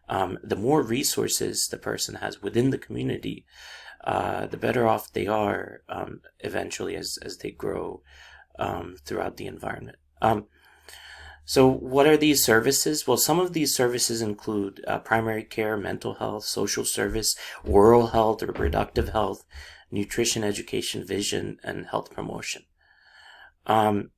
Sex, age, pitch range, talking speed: male, 30-49, 75-115 Hz, 140 wpm